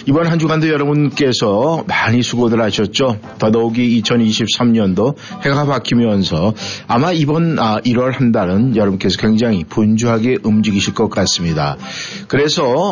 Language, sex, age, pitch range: Korean, male, 50-69, 110-145 Hz